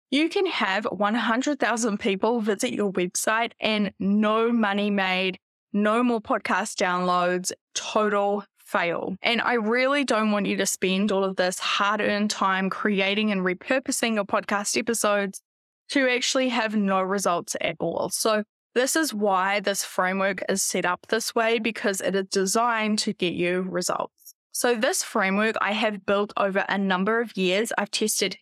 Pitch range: 195-230 Hz